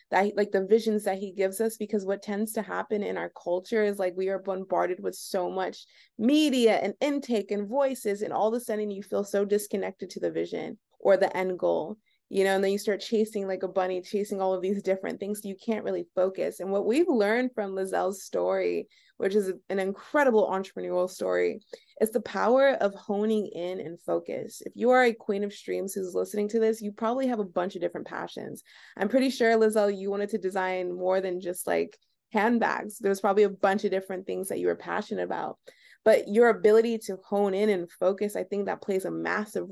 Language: English